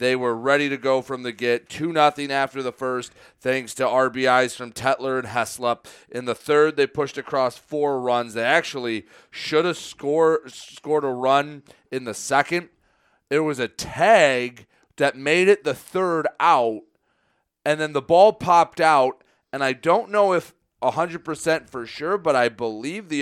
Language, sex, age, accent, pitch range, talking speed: English, male, 30-49, American, 130-155 Hz, 175 wpm